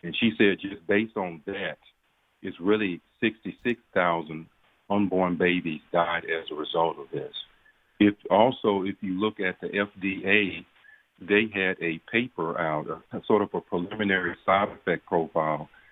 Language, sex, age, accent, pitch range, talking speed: English, male, 50-69, American, 85-100 Hz, 145 wpm